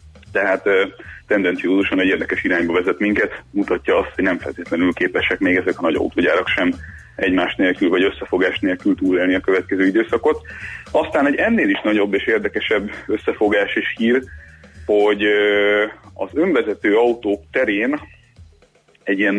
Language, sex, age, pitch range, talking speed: Hungarian, male, 30-49, 90-115 Hz, 140 wpm